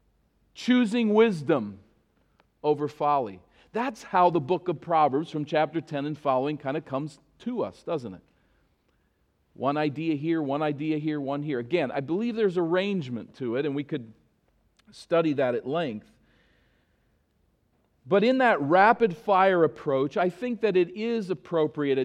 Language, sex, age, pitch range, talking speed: English, male, 40-59, 130-175 Hz, 150 wpm